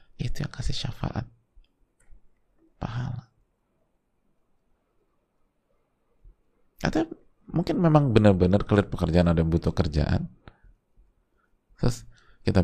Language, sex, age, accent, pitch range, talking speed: Indonesian, male, 30-49, native, 85-115 Hz, 75 wpm